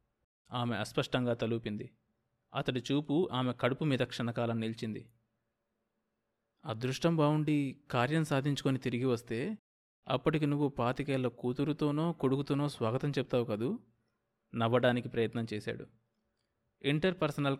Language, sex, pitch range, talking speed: Telugu, male, 115-140 Hz, 95 wpm